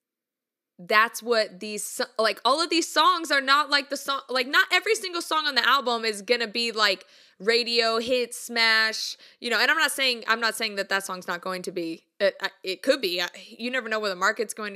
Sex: female